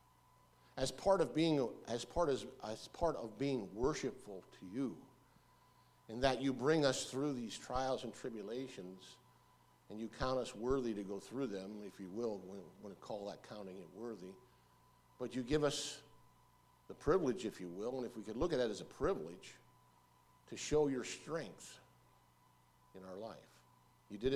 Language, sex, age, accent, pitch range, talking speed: English, male, 50-69, American, 105-130 Hz, 175 wpm